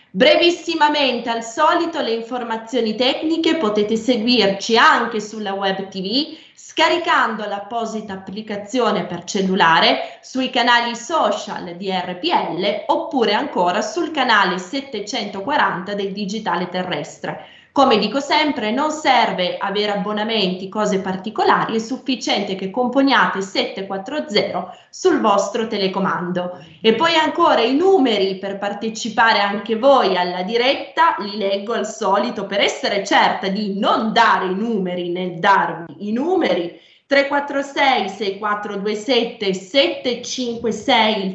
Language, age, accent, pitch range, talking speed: Italian, 20-39, native, 195-260 Hz, 110 wpm